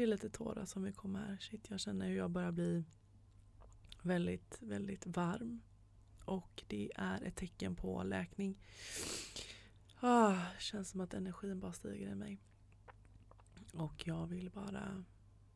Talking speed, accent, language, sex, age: 145 wpm, native, Swedish, female, 20-39